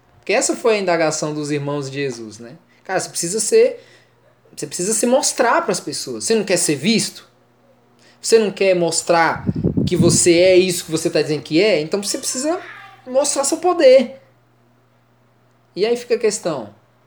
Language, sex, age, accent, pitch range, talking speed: Portuguese, male, 20-39, Brazilian, 145-200 Hz, 180 wpm